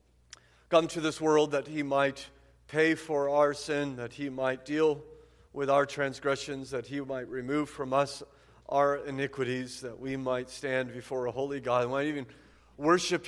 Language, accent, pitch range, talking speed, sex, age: English, American, 115-140 Hz, 165 wpm, male, 40-59